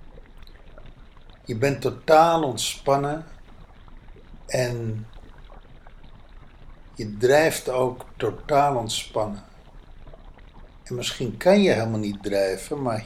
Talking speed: 85 wpm